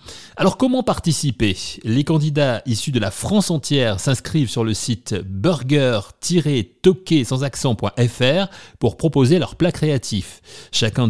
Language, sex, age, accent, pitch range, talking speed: French, male, 30-49, French, 110-155 Hz, 120 wpm